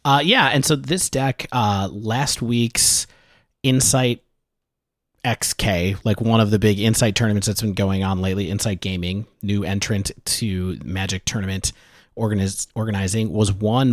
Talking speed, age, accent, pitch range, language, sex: 140 wpm, 30-49, American, 90-115 Hz, English, male